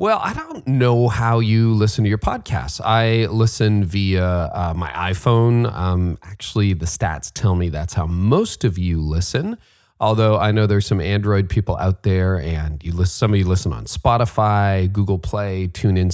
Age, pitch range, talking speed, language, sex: 40-59, 90-115 Hz, 180 wpm, English, male